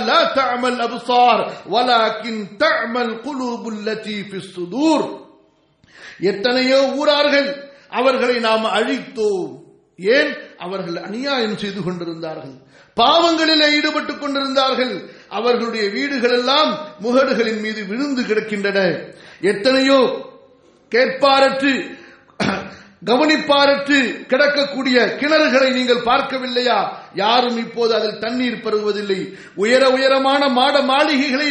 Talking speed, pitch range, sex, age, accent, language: 80 wpm, 235-285 Hz, male, 50-69, Indian, English